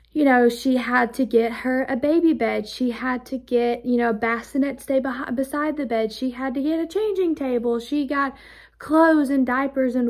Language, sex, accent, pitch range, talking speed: English, female, American, 235-280 Hz, 210 wpm